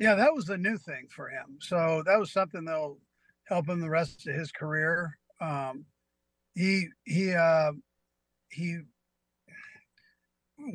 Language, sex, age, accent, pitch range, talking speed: English, male, 50-69, American, 140-175 Hz, 140 wpm